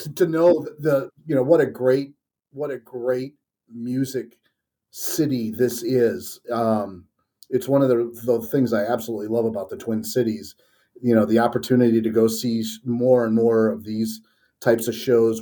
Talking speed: 170 wpm